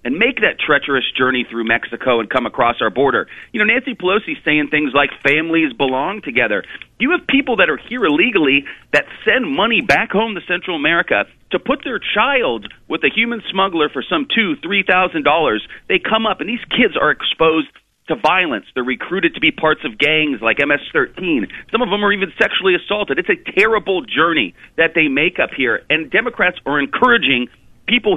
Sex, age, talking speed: male, 40-59, 190 wpm